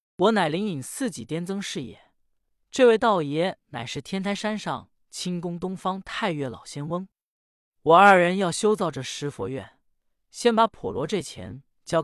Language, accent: Chinese, native